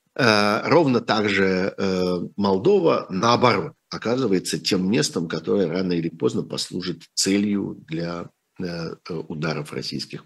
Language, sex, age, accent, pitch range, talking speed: Russian, male, 50-69, native, 80-100 Hz, 95 wpm